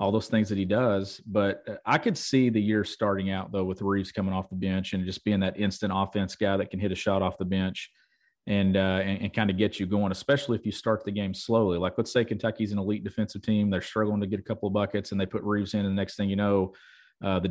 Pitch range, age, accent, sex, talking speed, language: 95-115 Hz, 40-59, American, male, 280 wpm, English